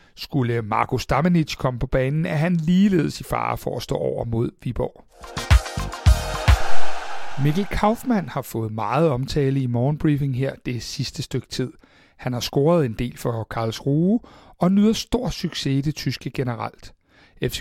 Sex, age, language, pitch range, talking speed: male, 60-79, Danish, 130-190 Hz, 155 wpm